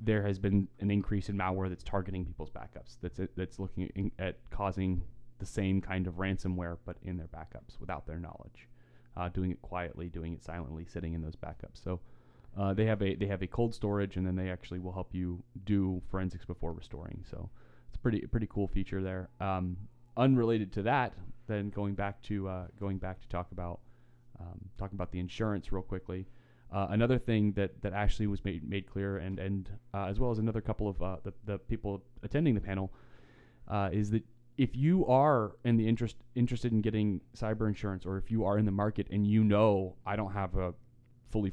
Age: 30-49